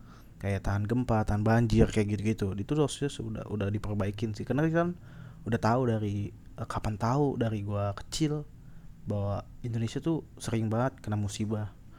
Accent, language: native, Indonesian